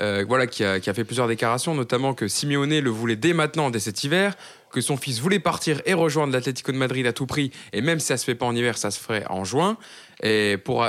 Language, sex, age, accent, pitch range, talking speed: French, male, 20-39, French, 115-160 Hz, 270 wpm